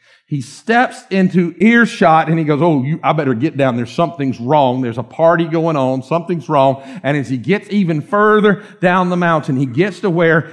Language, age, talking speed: English, 50-69, 200 wpm